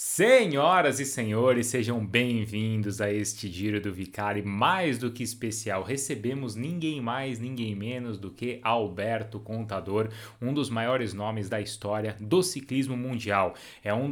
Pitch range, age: 115-150 Hz, 30-49